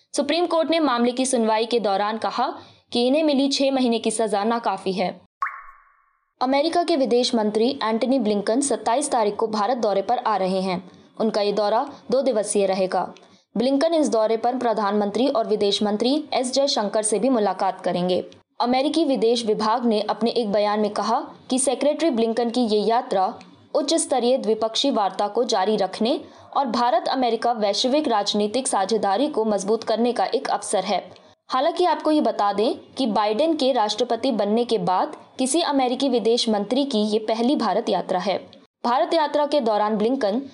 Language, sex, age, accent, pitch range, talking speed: Hindi, female, 20-39, native, 210-270 Hz, 170 wpm